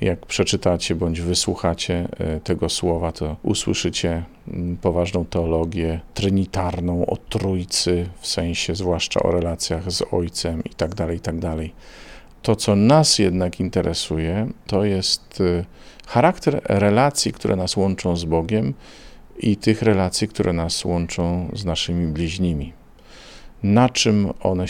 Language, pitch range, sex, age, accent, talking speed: Polish, 85-100 Hz, male, 50-69, native, 125 wpm